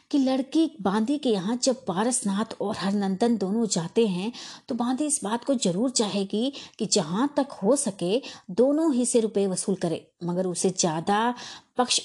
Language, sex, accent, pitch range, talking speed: Hindi, female, native, 185-245 Hz, 165 wpm